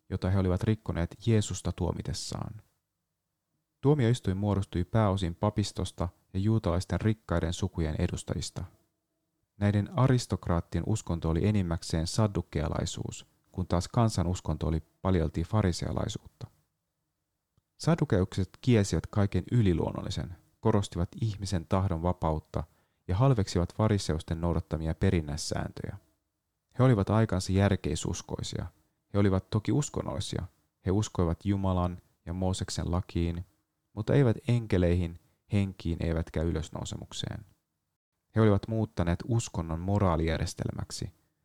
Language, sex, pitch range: Finnish, male, 85-105 Hz